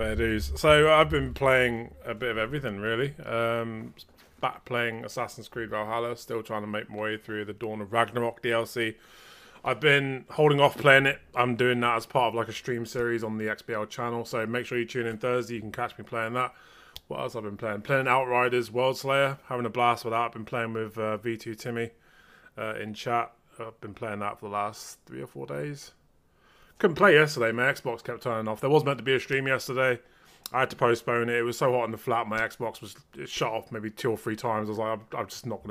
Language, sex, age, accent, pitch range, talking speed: English, male, 20-39, British, 110-125 Hz, 240 wpm